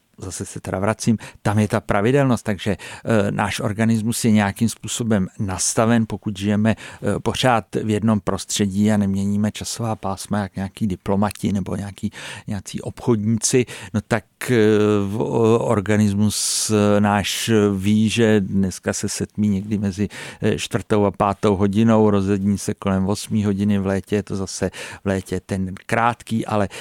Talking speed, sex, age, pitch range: 135 wpm, male, 50-69, 100-110 Hz